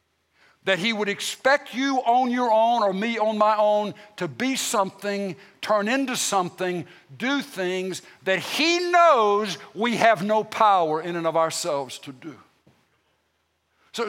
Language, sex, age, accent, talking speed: English, male, 60-79, American, 150 wpm